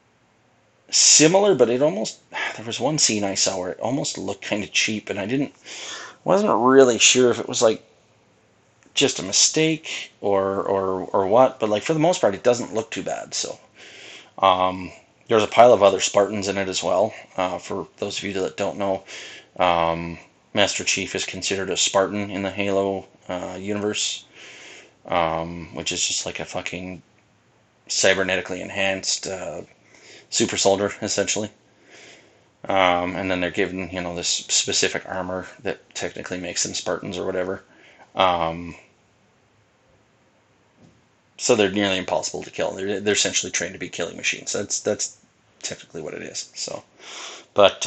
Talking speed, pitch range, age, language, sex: 165 wpm, 90-105 Hz, 30-49, English, male